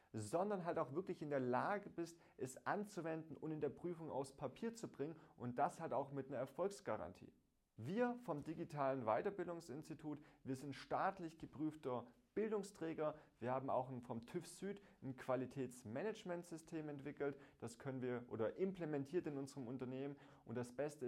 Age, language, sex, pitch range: 30-49, German, male, 125-160 Hz